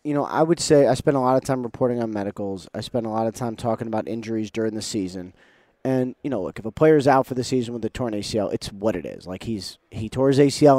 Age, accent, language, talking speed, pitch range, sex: 30-49, American, English, 285 wpm, 110-145 Hz, male